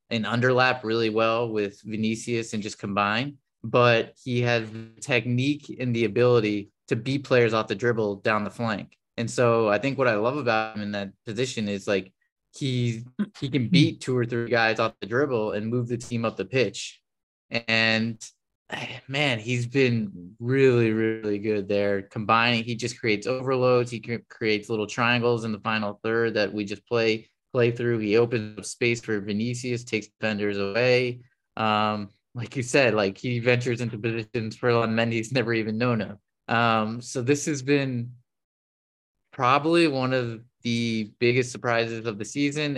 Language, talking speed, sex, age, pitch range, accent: English, 175 wpm, male, 20-39, 105-125 Hz, American